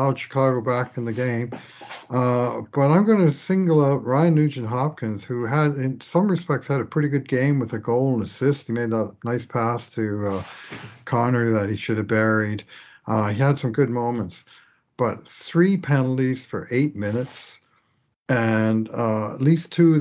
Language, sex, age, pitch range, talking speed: English, male, 60-79, 110-135 Hz, 185 wpm